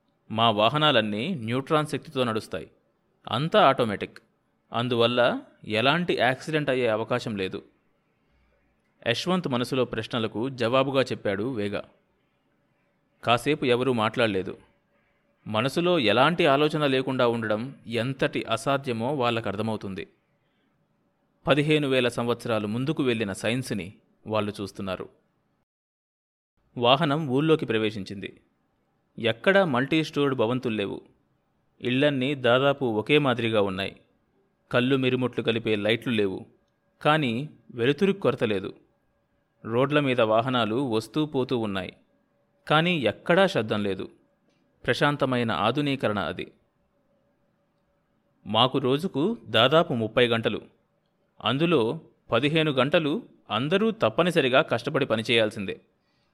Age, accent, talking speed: 30-49, native, 90 wpm